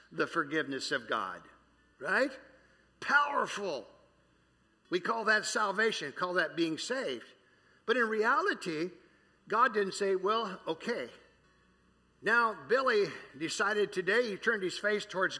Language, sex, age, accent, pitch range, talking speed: English, male, 50-69, American, 165-245 Hz, 120 wpm